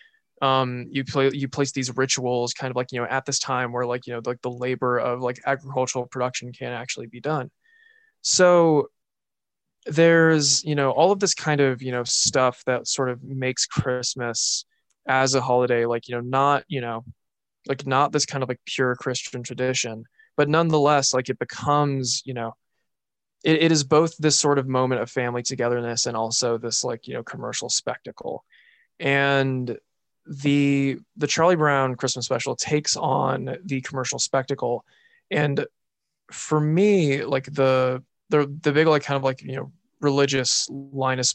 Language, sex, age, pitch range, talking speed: English, male, 20-39, 125-145 Hz, 175 wpm